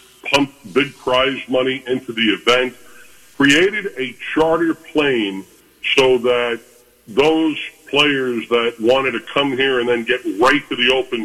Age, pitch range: 50-69, 115-140 Hz